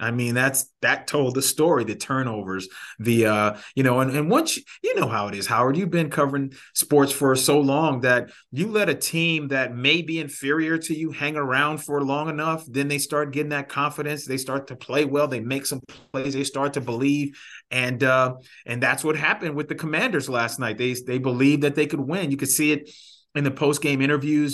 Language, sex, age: English, male, 30-49